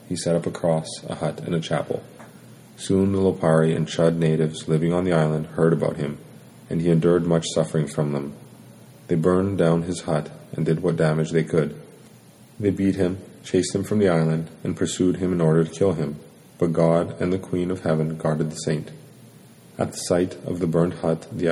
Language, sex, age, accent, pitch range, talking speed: English, male, 30-49, American, 80-90 Hz, 210 wpm